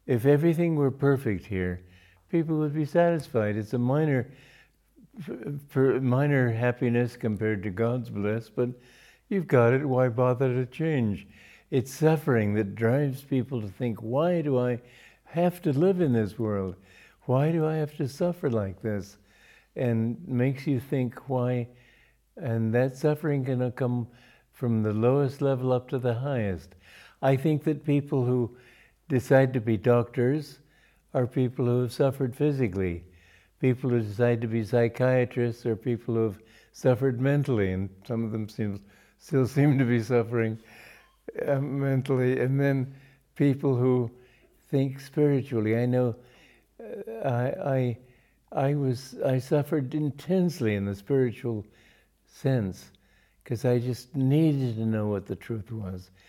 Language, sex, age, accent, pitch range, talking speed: English, male, 60-79, American, 115-140 Hz, 145 wpm